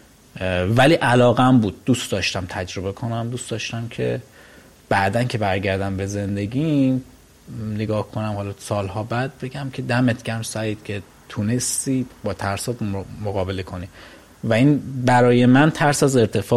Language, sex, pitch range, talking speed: Persian, male, 100-120 Hz, 140 wpm